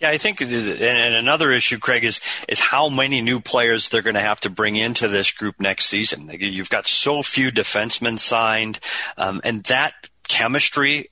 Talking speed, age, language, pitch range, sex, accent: 185 wpm, 40-59, English, 105-130 Hz, male, American